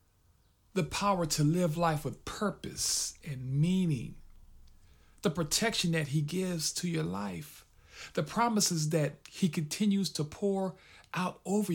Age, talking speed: 50-69, 135 wpm